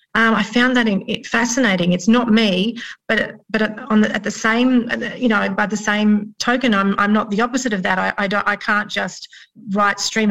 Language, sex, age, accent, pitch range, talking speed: English, female, 30-49, Australian, 195-225 Hz, 225 wpm